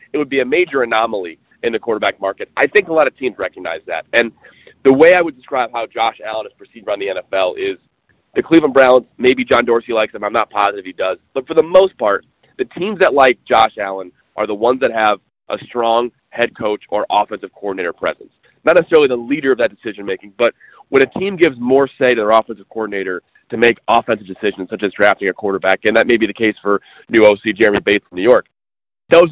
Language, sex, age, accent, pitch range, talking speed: English, male, 30-49, American, 110-140 Hz, 230 wpm